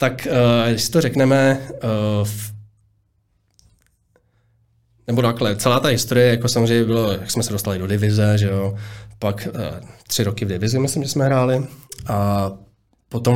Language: Czech